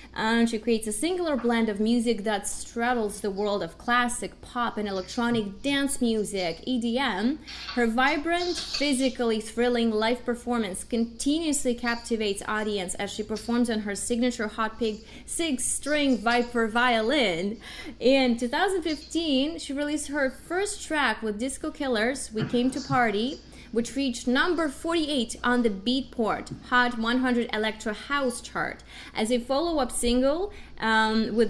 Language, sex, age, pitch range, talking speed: English, female, 20-39, 220-270 Hz, 140 wpm